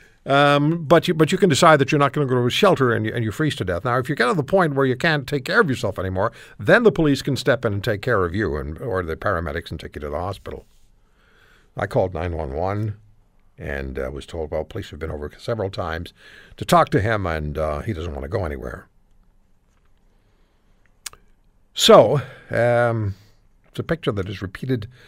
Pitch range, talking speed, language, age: 95-145 Hz, 220 wpm, English, 60-79